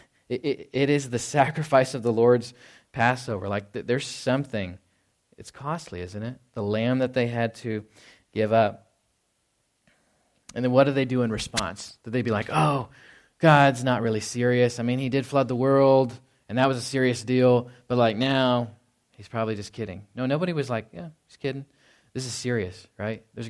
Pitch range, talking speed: 105-125 Hz, 185 wpm